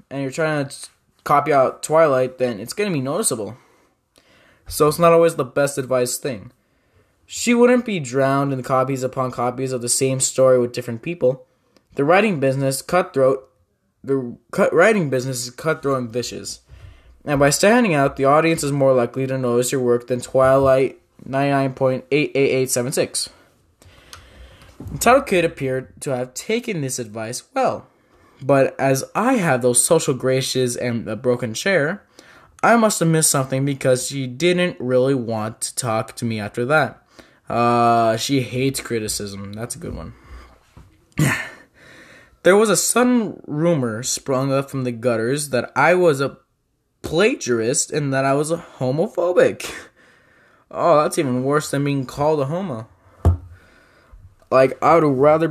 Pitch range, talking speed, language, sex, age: 120-145 Hz, 150 wpm, English, male, 20-39